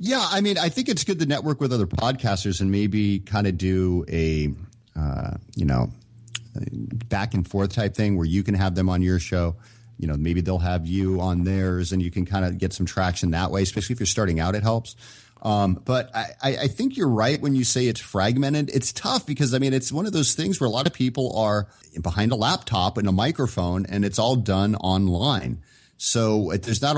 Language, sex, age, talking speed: English, male, 30-49, 225 wpm